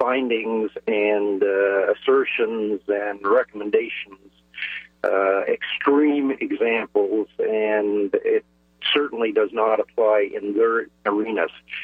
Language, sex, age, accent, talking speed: English, male, 50-69, American, 90 wpm